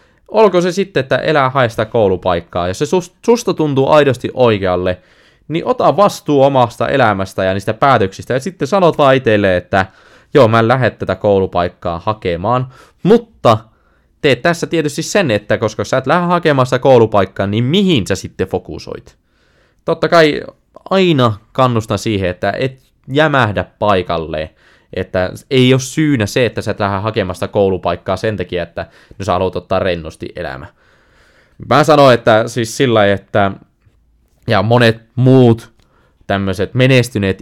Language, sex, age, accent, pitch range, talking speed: Finnish, male, 20-39, native, 95-135 Hz, 145 wpm